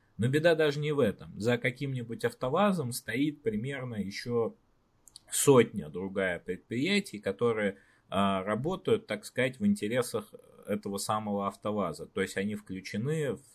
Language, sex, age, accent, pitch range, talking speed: Russian, male, 20-39, native, 100-140 Hz, 135 wpm